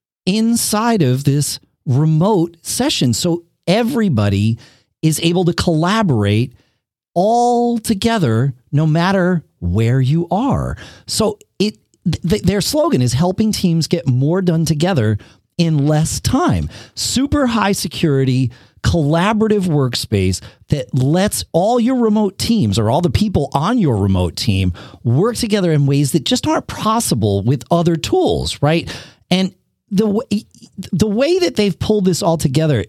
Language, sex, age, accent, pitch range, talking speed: English, male, 40-59, American, 125-185 Hz, 135 wpm